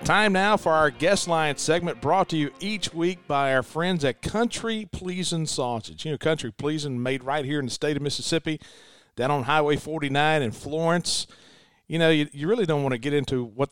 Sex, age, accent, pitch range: male, 40-59, American, 135-165 Hz